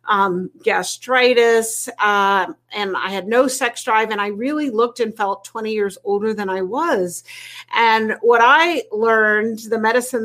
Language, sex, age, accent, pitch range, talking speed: English, female, 50-69, American, 205-255 Hz, 150 wpm